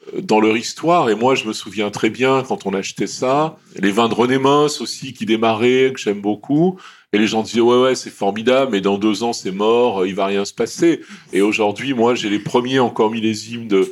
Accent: French